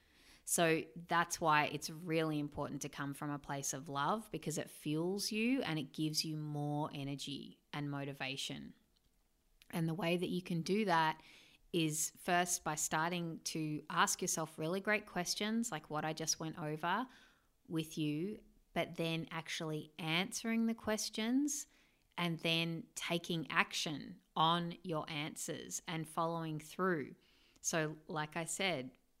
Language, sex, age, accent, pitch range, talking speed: English, female, 30-49, Australian, 150-180 Hz, 145 wpm